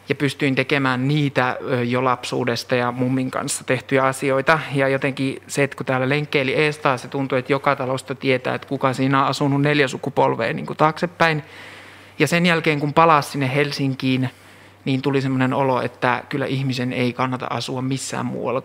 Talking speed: 165 wpm